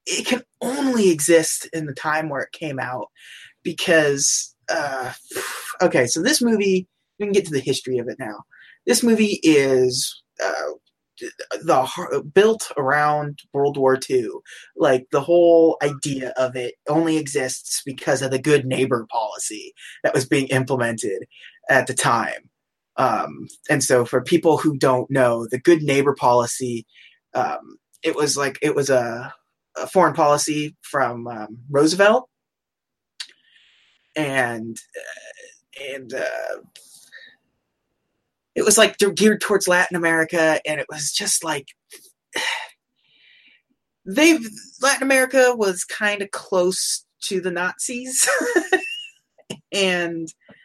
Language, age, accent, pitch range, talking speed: English, 20-39, American, 140-210 Hz, 130 wpm